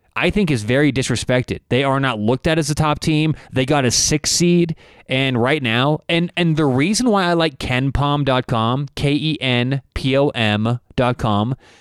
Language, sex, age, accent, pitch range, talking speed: English, male, 20-39, American, 120-150 Hz, 160 wpm